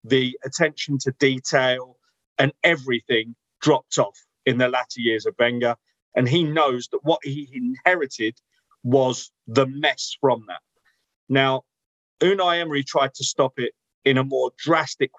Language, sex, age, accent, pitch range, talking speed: English, male, 40-59, British, 125-170 Hz, 145 wpm